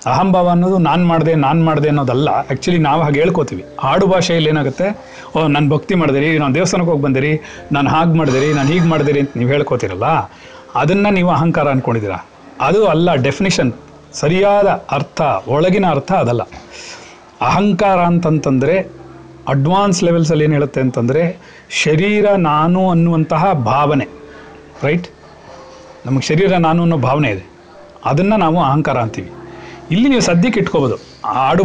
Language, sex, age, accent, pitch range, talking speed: Kannada, male, 40-59, native, 140-185 Hz, 135 wpm